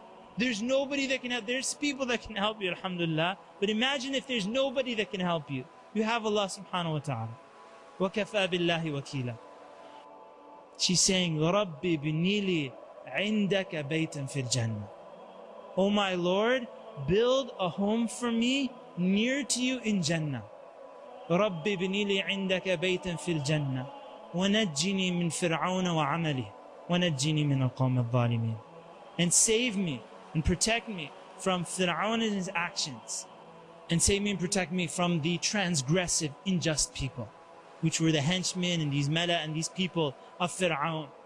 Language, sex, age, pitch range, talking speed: English, male, 30-49, 160-210 Hz, 145 wpm